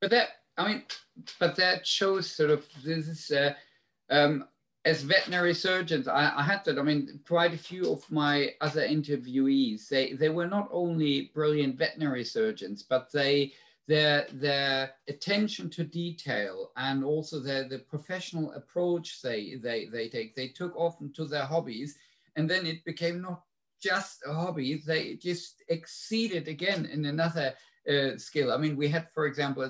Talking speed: 165 wpm